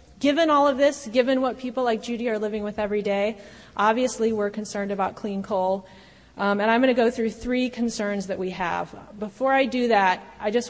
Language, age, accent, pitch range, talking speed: English, 30-49, American, 195-235 Hz, 215 wpm